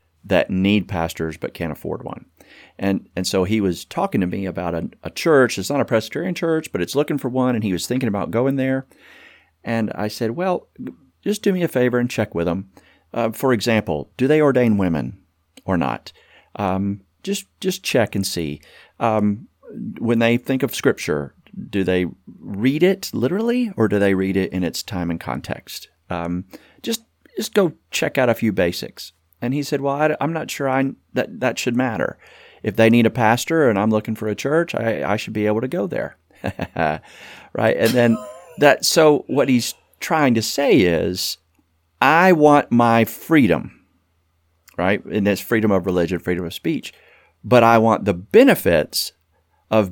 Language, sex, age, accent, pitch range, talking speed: English, male, 40-59, American, 90-130 Hz, 185 wpm